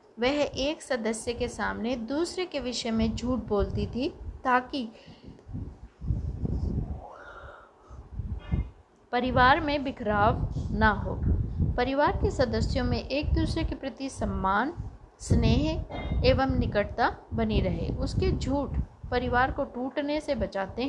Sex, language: female, Hindi